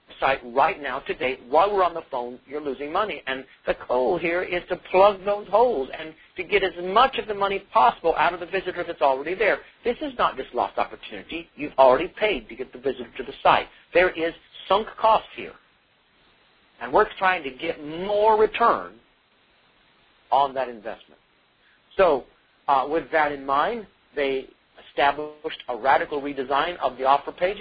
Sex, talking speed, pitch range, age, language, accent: male, 180 wpm, 155-200 Hz, 50-69, English, American